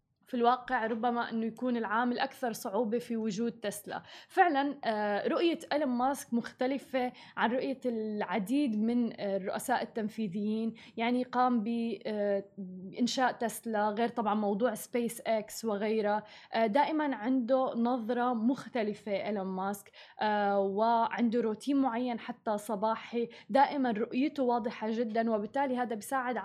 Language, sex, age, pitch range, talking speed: Arabic, female, 20-39, 215-255 Hz, 115 wpm